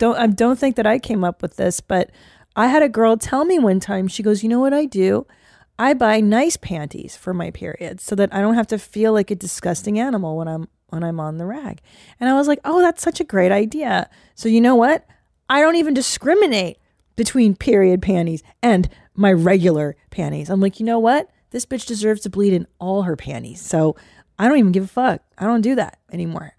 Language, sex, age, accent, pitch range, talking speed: English, female, 30-49, American, 180-235 Hz, 230 wpm